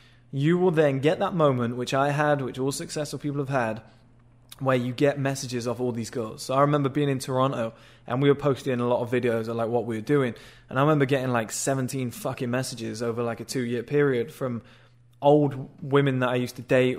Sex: male